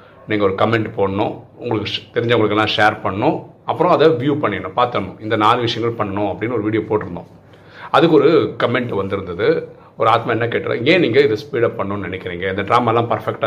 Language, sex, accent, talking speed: Tamil, male, native, 175 wpm